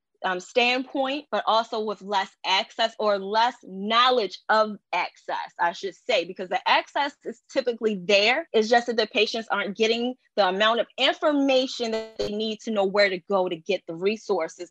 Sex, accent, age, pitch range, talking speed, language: female, American, 20-39, 195-245 Hz, 180 wpm, English